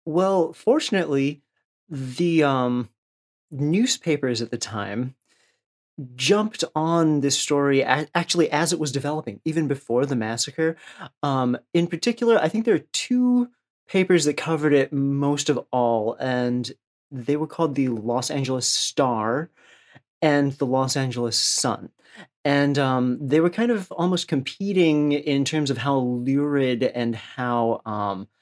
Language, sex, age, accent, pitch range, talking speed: English, male, 30-49, American, 120-155 Hz, 135 wpm